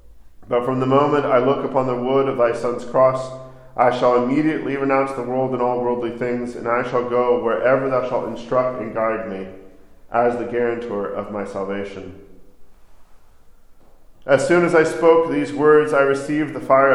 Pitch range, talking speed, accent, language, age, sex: 115-140 Hz, 180 wpm, American, English, 40-59, male